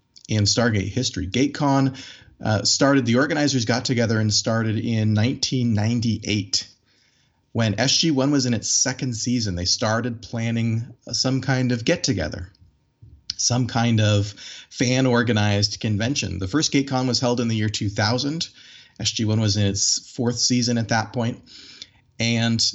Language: English